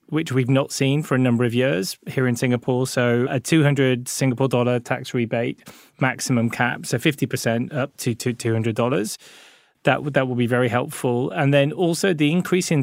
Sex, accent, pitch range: male, British, 125-145 Hz